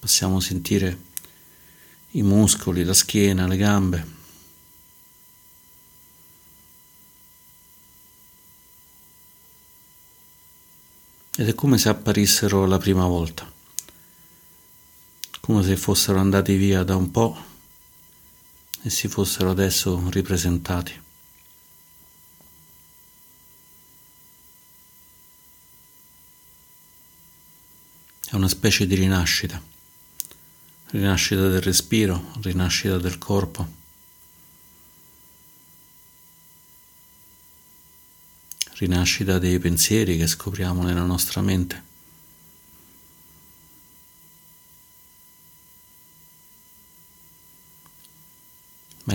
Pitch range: 85-95 Hz